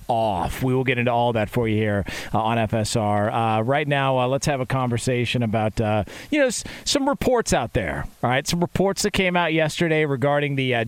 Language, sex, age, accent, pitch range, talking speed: English, male, 40-59, American, 120-150 Hz, 225 wpm